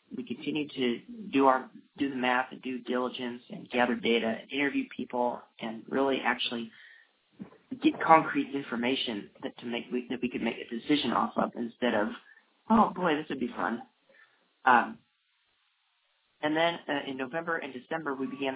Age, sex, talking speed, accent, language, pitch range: 30-49, male, 170 wpm, American, English, 120-145 Hz